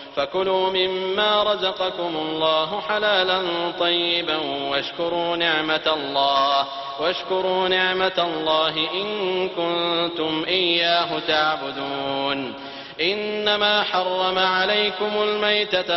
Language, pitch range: French, 155-185 Hz